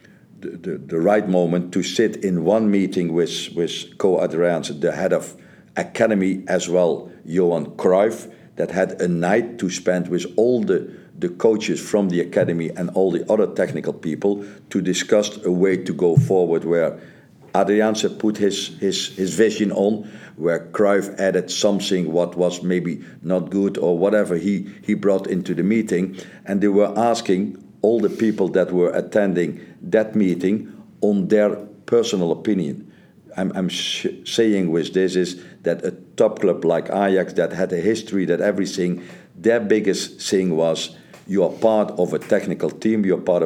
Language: English